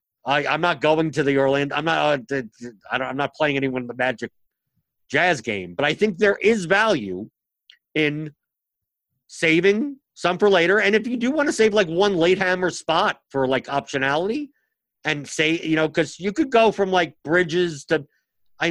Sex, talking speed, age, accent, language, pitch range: male, 190 wpm, 50-69, American, English, 140-190 Hz